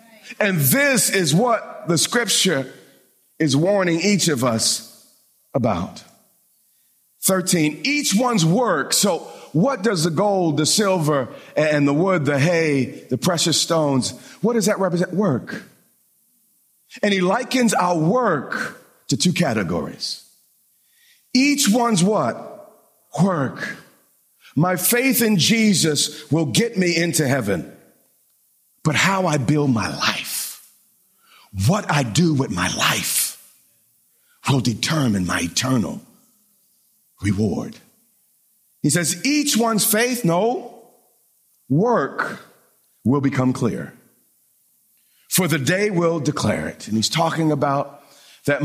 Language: English